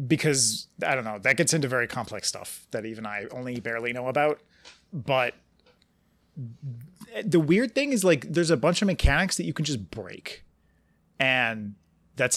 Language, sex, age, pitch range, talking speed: English, male, 30-49, 115-155 Hz, 170 wpm